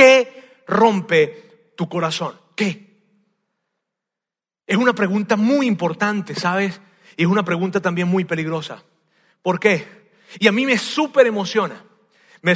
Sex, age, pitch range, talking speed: male, 40-59, 165-215 Hz, 130 wpm